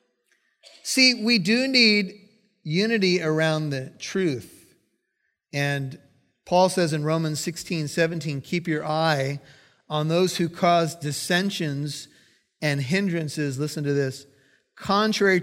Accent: American